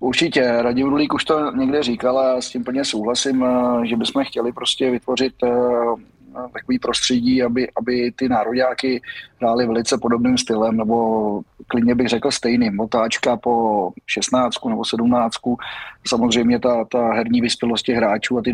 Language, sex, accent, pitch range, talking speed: Czech, male, native, 115-125 Hz, 145 wpm